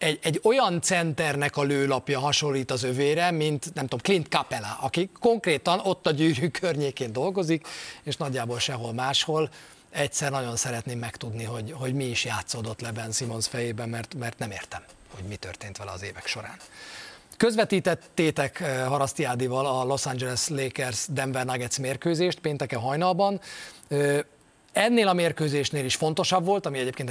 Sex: male